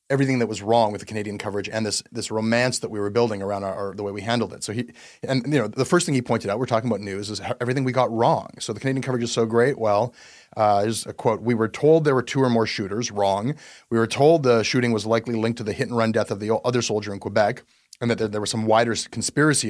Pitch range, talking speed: 110-130 Hz, 285 wpm